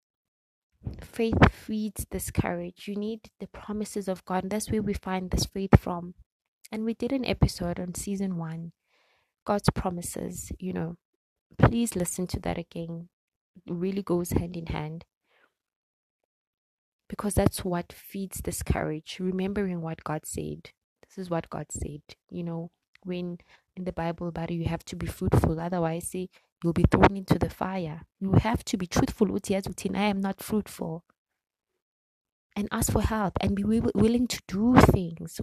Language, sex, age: English, female, 20-39